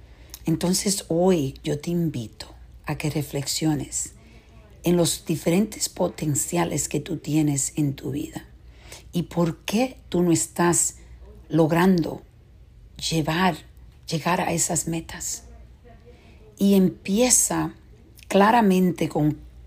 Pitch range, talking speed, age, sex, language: 145-175 Hz, 105 wpm, 50-69, female, Spanish